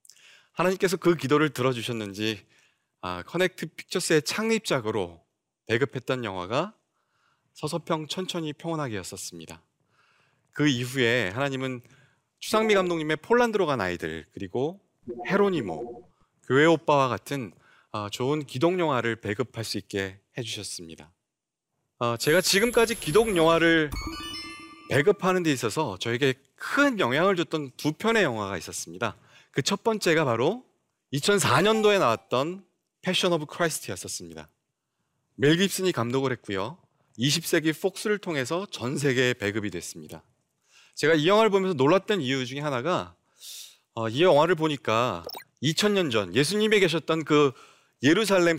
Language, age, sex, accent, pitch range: Korean, 30-49, male, native, 115-180 Hz